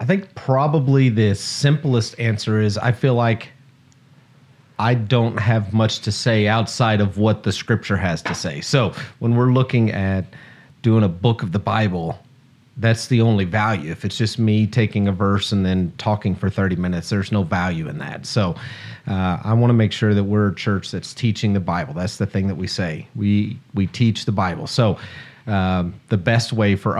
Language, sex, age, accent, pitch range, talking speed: English, male, 40-59, American, 100-115 Hz, 200 wpm